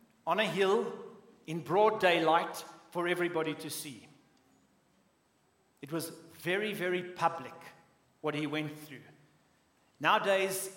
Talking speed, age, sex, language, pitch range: 110 wpm, 60-79, male, English, 160-210 Hz